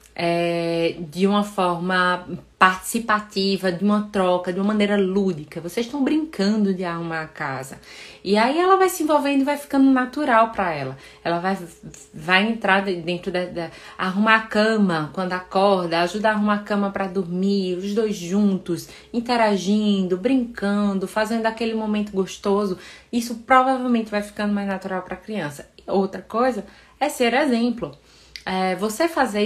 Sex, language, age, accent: female, Portuguese, 20-39, Brazilian